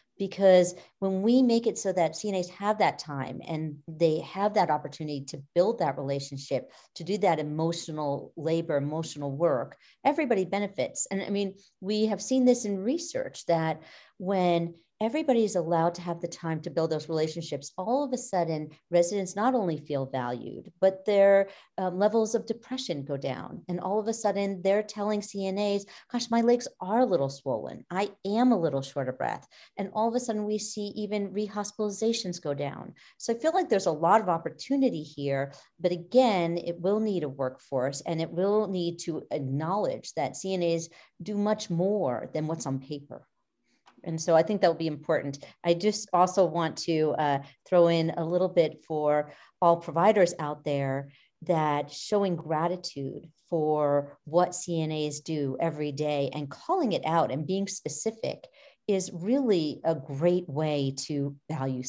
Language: English